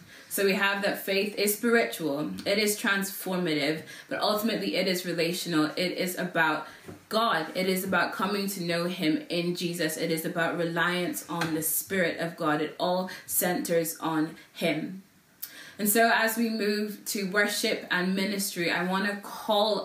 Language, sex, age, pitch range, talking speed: English, female, 20-39, 165-205 Hz, 165 wpm